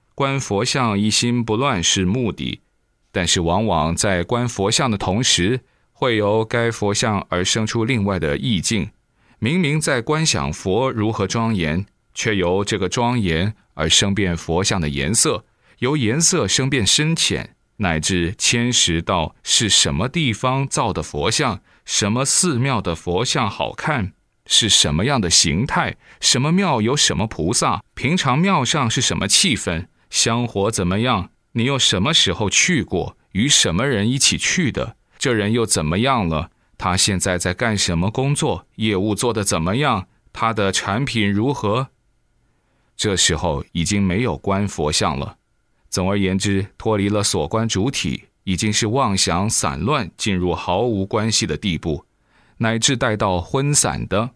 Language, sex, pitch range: Chinese, male, 95-120 Hz